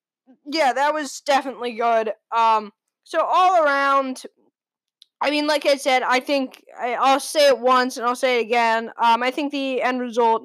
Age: 10-29